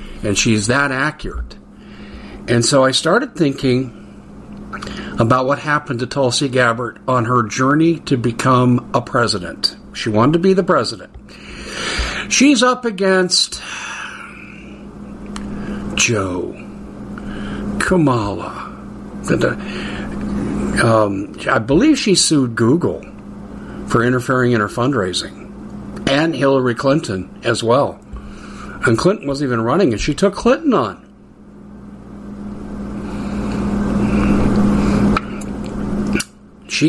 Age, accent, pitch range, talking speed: 50-69, American, 115-155 Hz, 100 wpm